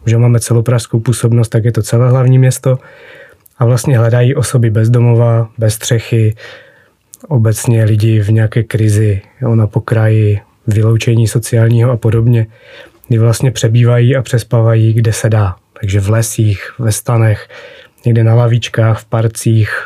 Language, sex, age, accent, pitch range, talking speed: Czech, male, 20-39, native, 110-120 Hz, 145 wpm